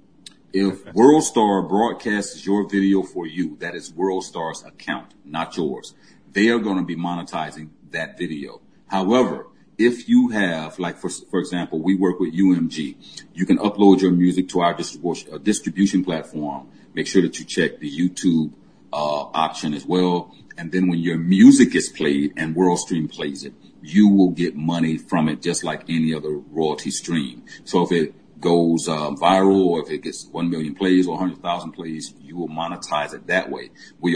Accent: American